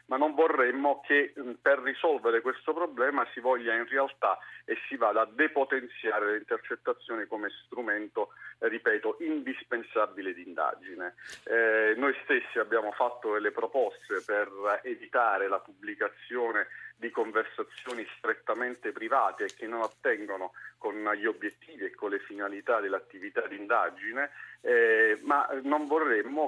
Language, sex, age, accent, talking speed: Italian, male, 40-59, native, 125 wpm